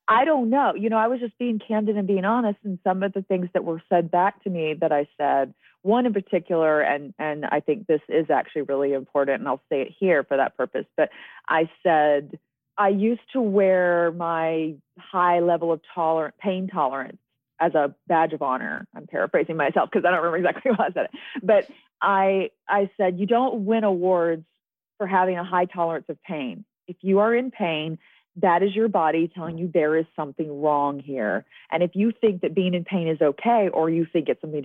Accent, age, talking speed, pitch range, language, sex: American, 30-49, 215 wpm, 155-205 Hz, English, female